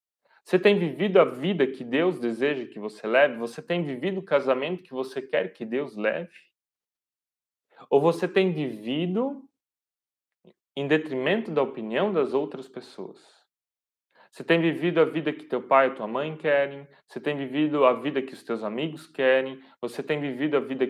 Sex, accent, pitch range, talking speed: male, Brazilian, 130-175 Hz, 170 wpm